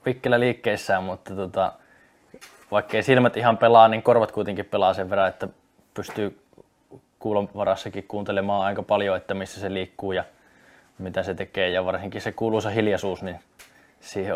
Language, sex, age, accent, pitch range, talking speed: Finnish, male, 20-39, native, 100-110 Hz, 140 wpm